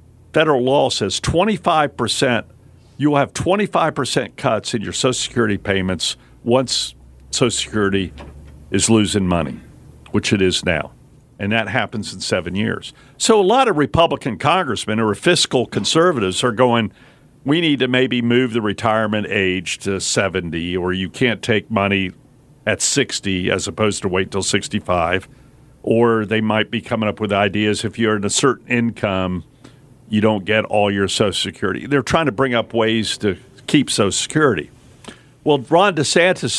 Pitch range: 95-125 Hz